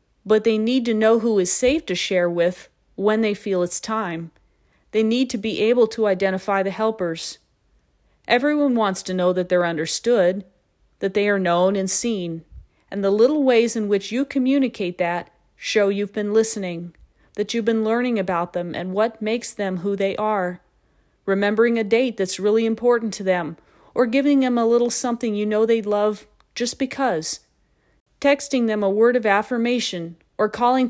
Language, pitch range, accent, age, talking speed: English, 190-235 Hz, American, 40-59, 180 wpm